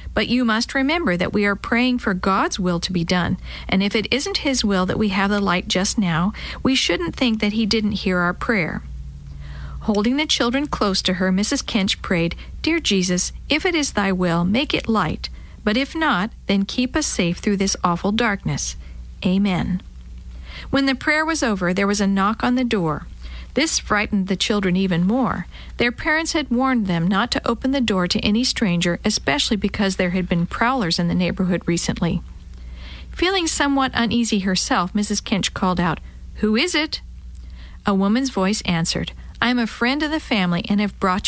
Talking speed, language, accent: 190 wpm, English, American